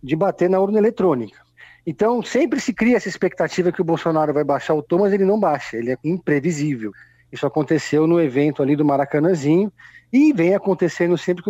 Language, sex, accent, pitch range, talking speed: Portuguese, male, Brazilian, 135-180 Hz, 195 wpm